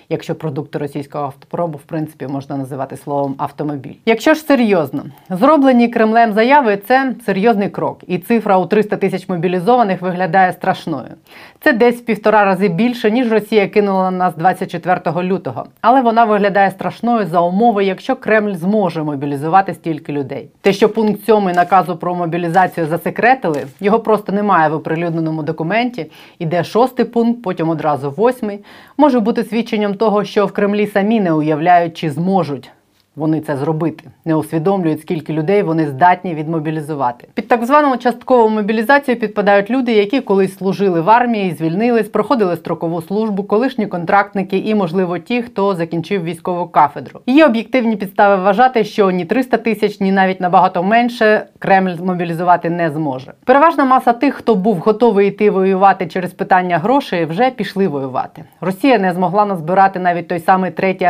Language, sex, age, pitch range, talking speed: Ukrainian, female, 30-49, 170-220 Hz, 155 wpm